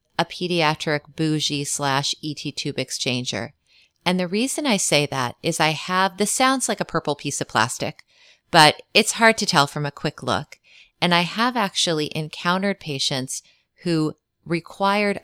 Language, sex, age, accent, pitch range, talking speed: English, female, 30-49, American, 140-170 Hz, 160 wpm